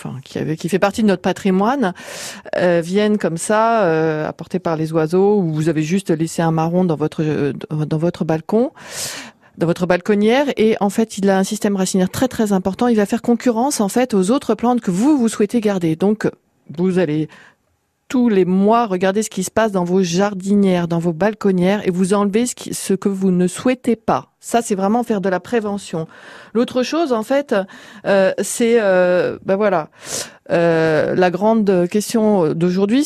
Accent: French